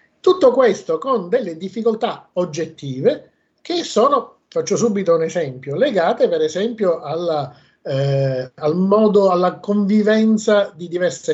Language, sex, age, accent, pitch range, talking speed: Italian, male, 50-69, native, 155-225 Hz, 115 wpm